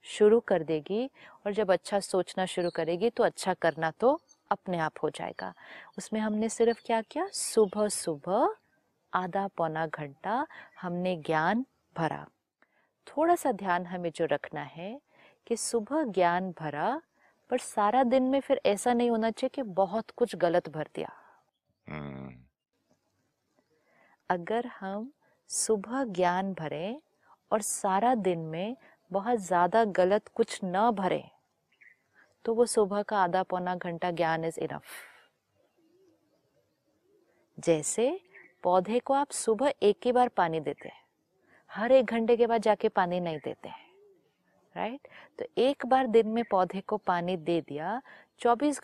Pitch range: 180-250 Hz